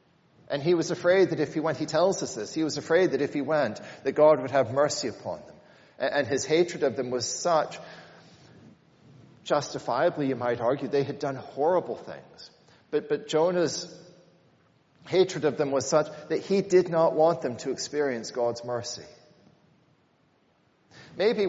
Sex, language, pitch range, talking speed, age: male, English, 140-175 Hz, 170 wpm, 40-59